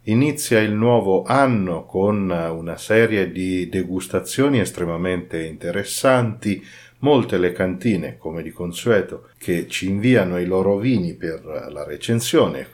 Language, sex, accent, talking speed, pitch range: Italian, male, native, 125 wpm, 90-120 Hz